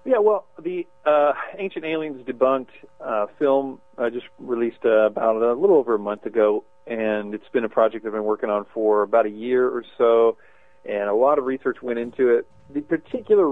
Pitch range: 110-140 Hz